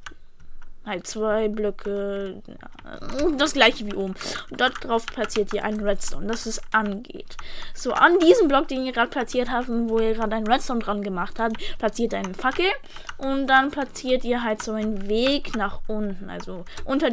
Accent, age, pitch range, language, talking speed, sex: German, 10-29, 210-255 Hz, German, 175 wpm, female